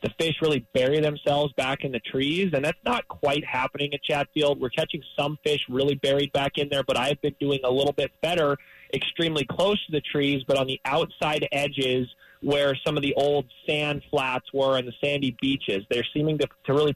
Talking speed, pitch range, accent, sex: 210 wpm, 135-150 Hz, American, male